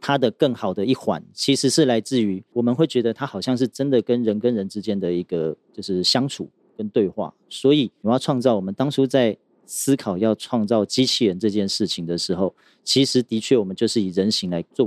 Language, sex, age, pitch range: Chinese, male, 40-59, 100-130 Hz